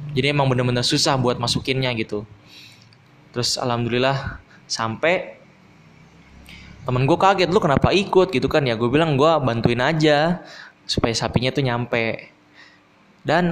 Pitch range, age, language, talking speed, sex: 120-150 Hz, 20-39, Indonesian, 130 wpm, male